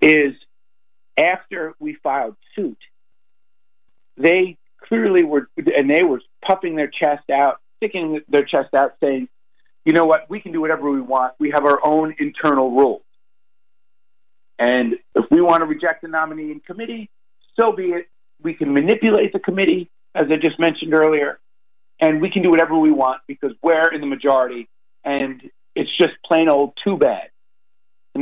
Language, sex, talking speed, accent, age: English, male, 165 wpm, American, 50-69